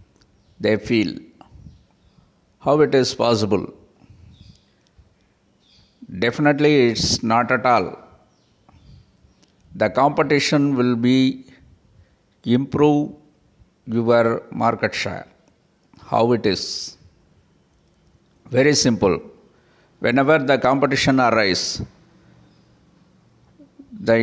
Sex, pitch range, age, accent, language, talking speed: male, 115-140 Hz, 50-69, native, Tamil, 70 wpm